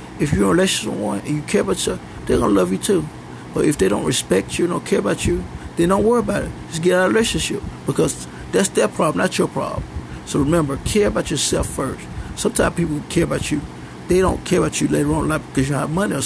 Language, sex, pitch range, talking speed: English, male, 115-155 Hz, 260 wpm